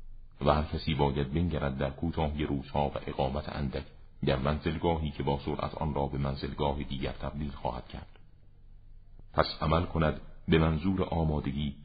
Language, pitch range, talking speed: Persian, 70-90 Hz, 150 wpm